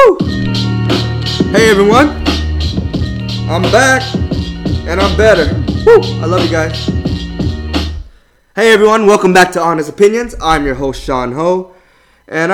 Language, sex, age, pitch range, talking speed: English, male, 20-39, 125-160 Hz, 115 wpm